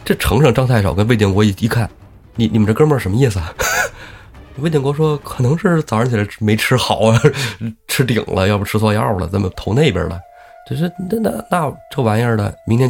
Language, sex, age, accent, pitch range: Chinese, male, 20-39, native, 105-135 Hz